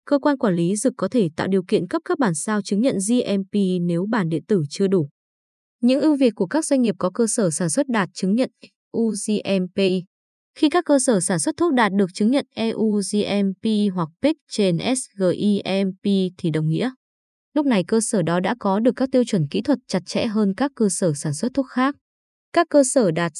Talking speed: 220 wpm